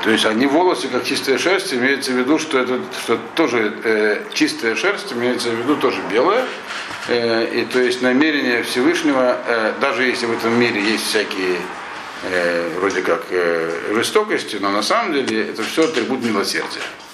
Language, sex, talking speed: Russian, male, 170 wpm